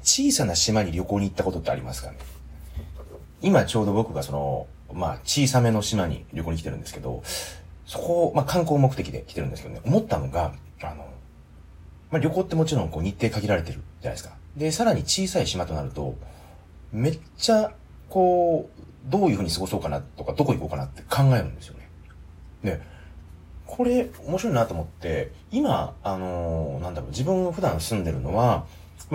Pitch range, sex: 80-115 Hz, male